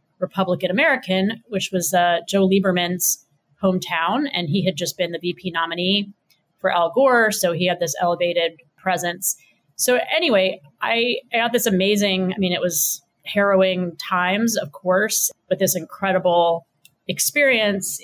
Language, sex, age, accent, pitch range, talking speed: English, female, 30-49, American, 175-200 Hz, 145 wpm